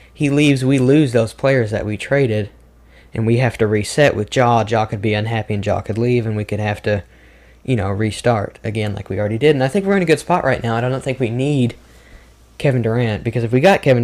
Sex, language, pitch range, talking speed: male, English, 75-125 Hz, 250 wpm